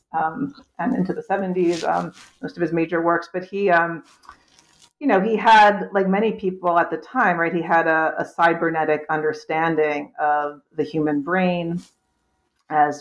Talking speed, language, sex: 165 wpm, English, female